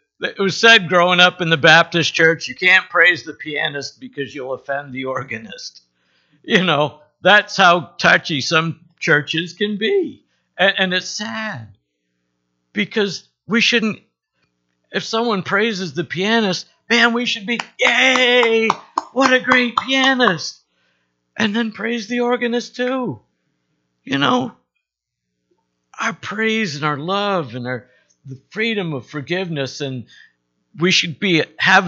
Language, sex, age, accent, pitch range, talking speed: English, male, 60-79, American, 120-195 Hz, 135 wpm